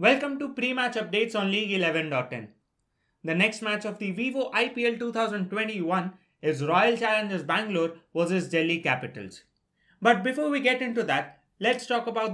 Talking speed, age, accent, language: 155 wpm, 30-49, Indian, English